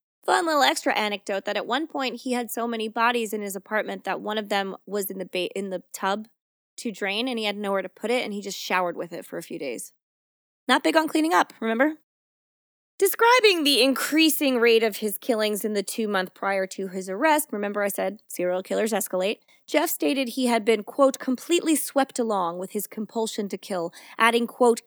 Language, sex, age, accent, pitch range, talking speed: English, female, 20-39, American, 200-255 Hz, 215 wpm